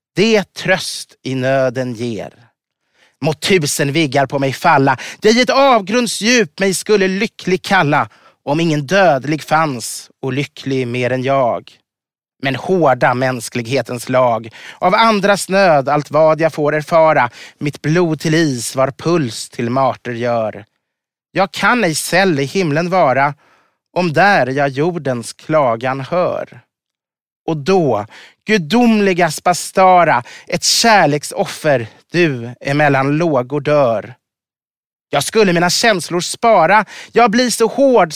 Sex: male